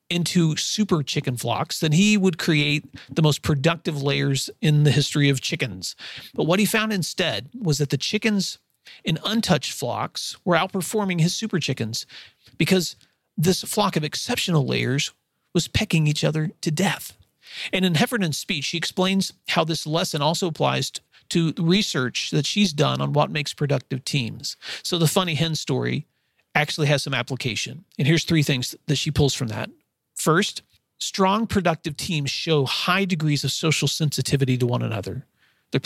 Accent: American